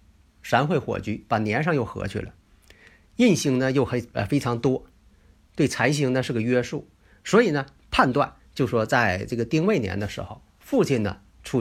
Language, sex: Chinese, male